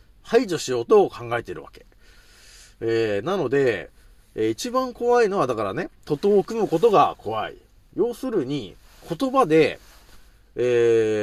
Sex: male